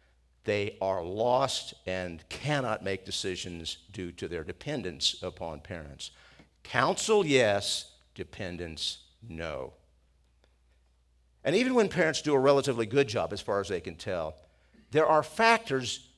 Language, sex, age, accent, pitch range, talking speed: English, male, 50-69, American, 85-140 Hz, 130 wpm